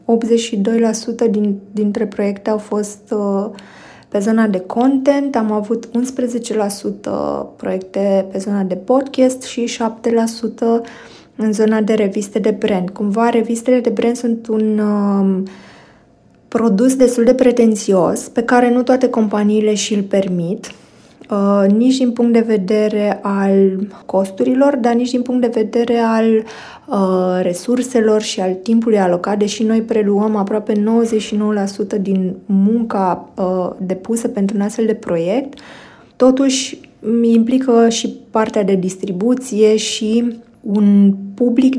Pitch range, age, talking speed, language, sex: 200-235 Hz, 20-39, 125 wpm, Romanian, female